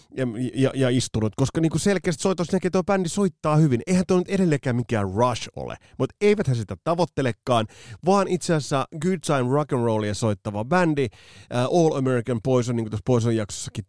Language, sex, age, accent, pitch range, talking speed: Finnish, male, 30-49, native, 105-155 Hz, 185 wpm